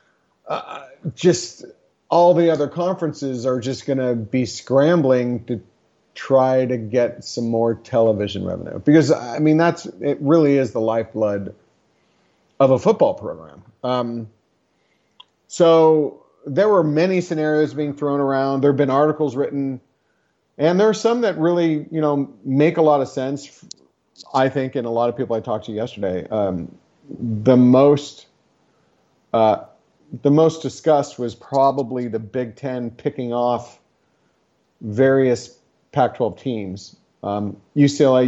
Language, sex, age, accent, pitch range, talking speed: English, male, 40-59, American, 120-150 Hz, 140 wpm